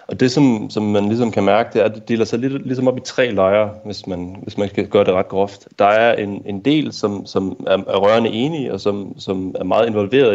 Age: 30-49